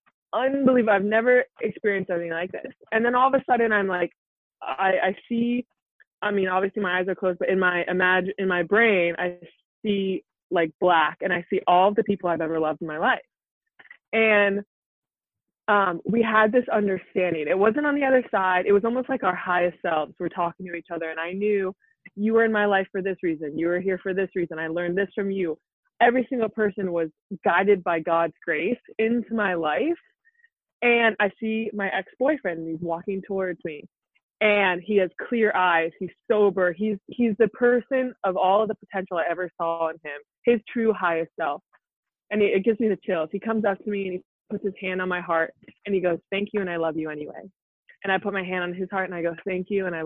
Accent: American